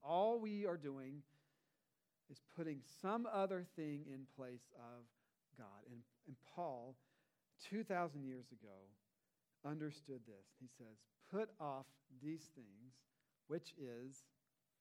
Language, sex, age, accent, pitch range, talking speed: English, male, 40-59, American, 145-225 Hz, 120 wpm